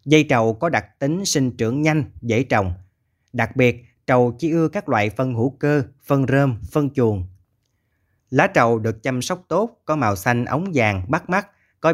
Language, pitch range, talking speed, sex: Vietnamese, 105-140 Hz, 190 wpm, male